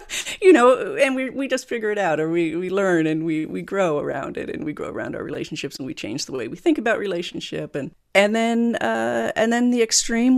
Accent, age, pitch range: American, 40-59, 145-195 Hz